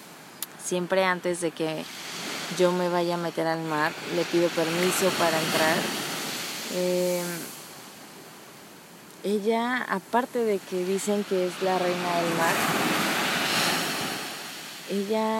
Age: 20-39